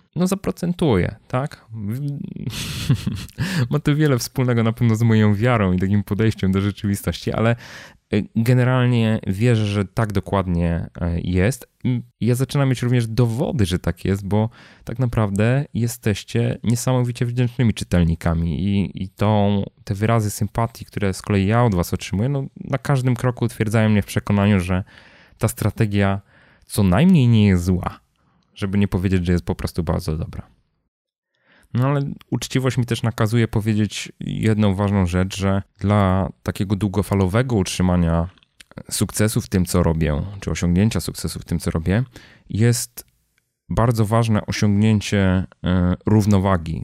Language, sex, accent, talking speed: Polish, male, native, 140 wpm